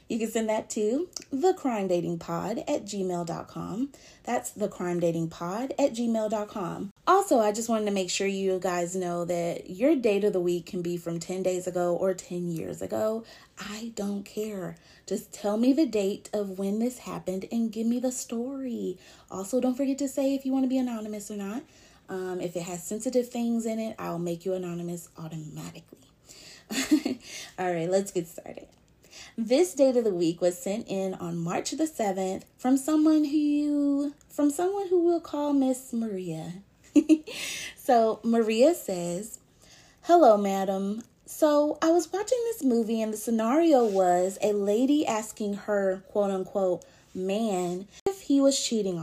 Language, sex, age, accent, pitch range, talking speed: English, female, 30-49, American, 185-265 Hz, 165 wpm